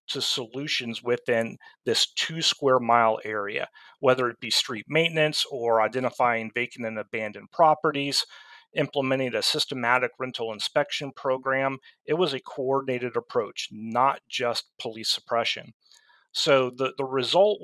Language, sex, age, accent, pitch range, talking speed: English, male, 40-59, American, 115-140 Hz, 120 wpm